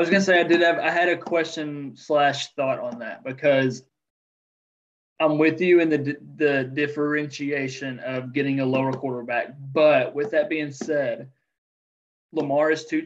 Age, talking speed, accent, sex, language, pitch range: 20-39, 175 wpm, American, male, English, 130-155 Hz